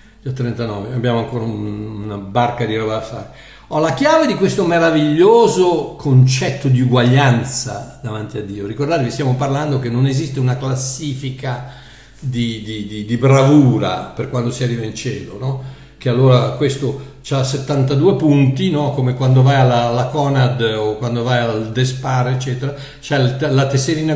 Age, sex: 60-79, male